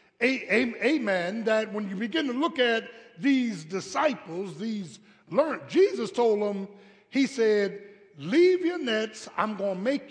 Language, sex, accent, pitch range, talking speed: English, male, American, 190-250 Hz, 140 wpm